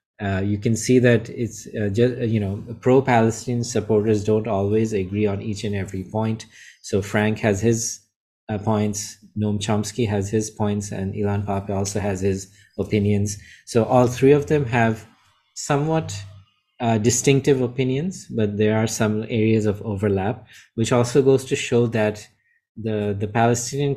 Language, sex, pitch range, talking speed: English, male, 100-115 Hz, 165 wpm